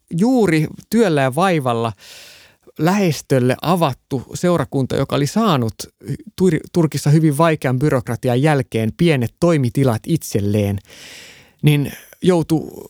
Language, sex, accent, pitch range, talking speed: Finnish, male, native, 115-155 Hz, 95 wpm